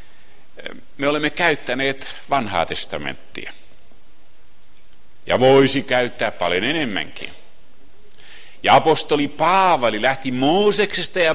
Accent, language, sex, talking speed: native, Finnish, male, 85 wpm